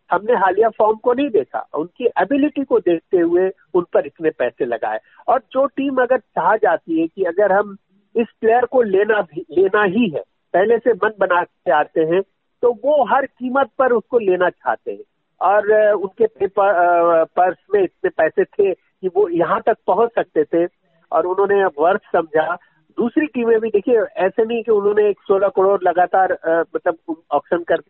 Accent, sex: native, male